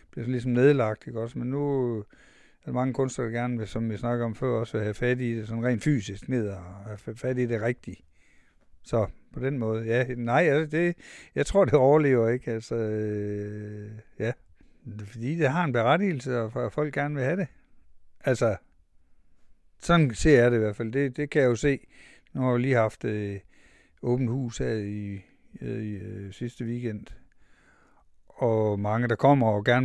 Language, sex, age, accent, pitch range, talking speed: Danish, male, 60-79, native, 110-135 Hz, 195 wpm